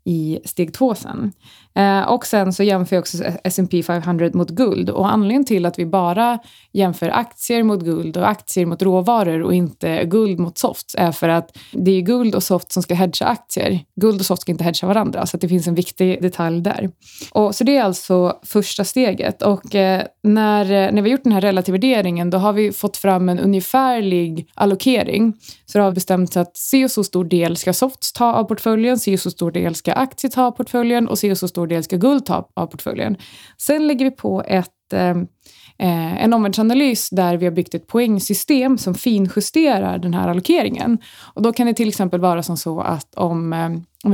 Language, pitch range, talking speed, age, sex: Swedish, 175-215 Hz, 210 wpm, 20-39, female